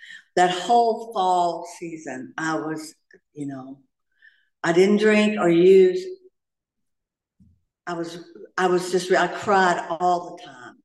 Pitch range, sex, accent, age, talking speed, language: 175-230 Hz, female, American, 60-79, 125 wpm, English